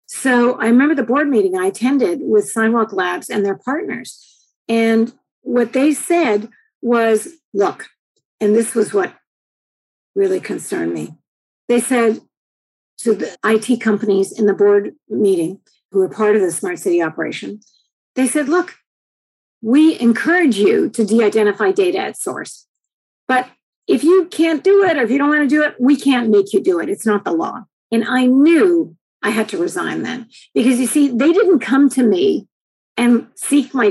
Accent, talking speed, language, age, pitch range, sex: American, 175 wpm, English, 50-69, 225-325 Hz, female